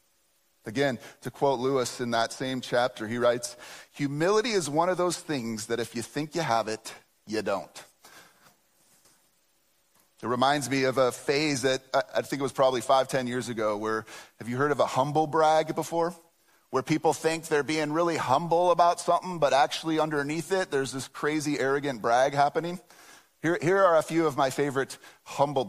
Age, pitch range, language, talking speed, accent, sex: 30-49, 125-170 Hz, English, 180 wpm, American, male